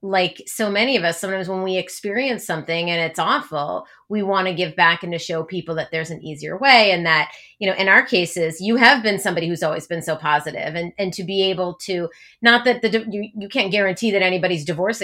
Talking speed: 235 wpm